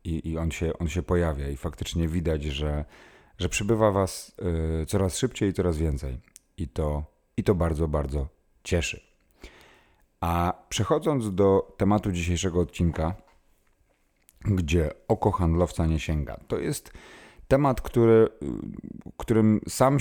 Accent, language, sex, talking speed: native, Polish, male, 130 wpm